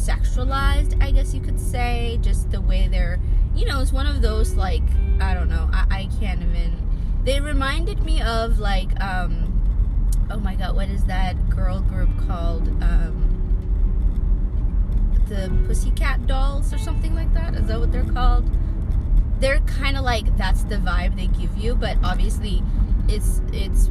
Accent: American